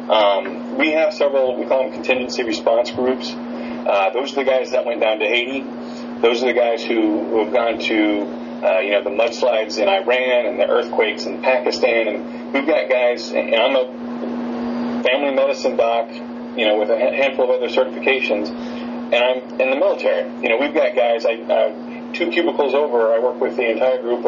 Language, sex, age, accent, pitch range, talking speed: English, male, 30-49, American, 115-140 Hz, 200 wpm